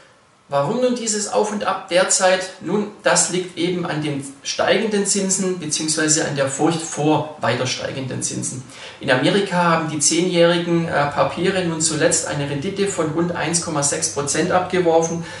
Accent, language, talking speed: German, German, 150 wpm